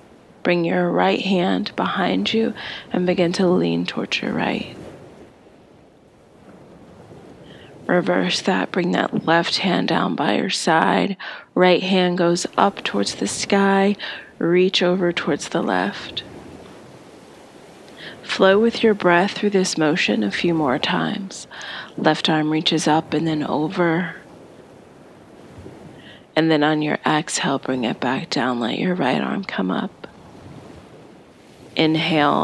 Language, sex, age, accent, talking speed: English, female, 30-49, American, 130 wpm